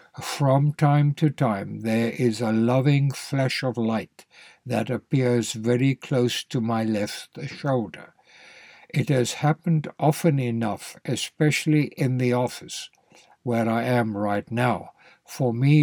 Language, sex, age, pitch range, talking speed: English, male, 60-79, 115-140 Hz, 135 wpm